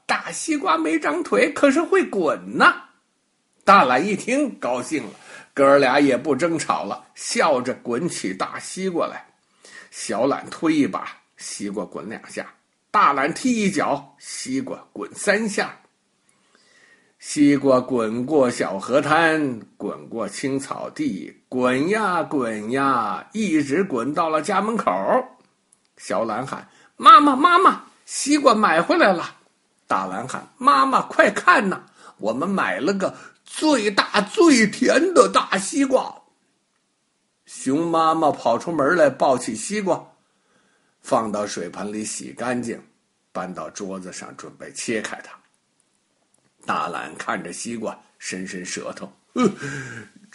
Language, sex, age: Chinese, male, 60-79